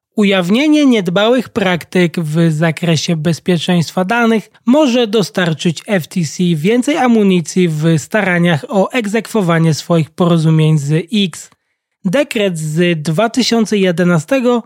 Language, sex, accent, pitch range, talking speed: Polish, male, native, 170-220 Hz, 95 wpm